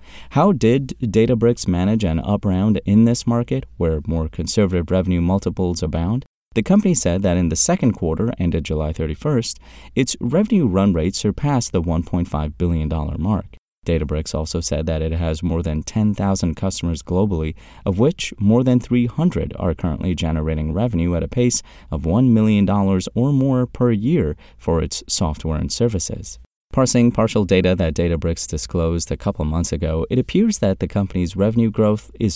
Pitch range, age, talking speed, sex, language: 85-110 Hz, 30-49, 165 wpm, male, English